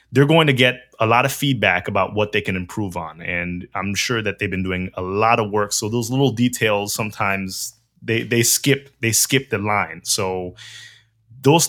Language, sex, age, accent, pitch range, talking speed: English, male, 20-39, American, 100-120 Hz, 200 wpm